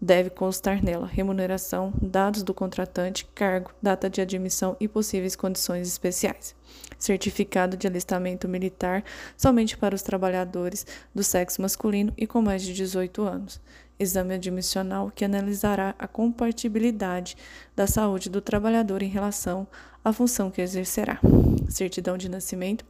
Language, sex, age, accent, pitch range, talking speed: Portuguese, female, 20-39, Brazilian, 185-210 Hz, 135 wpm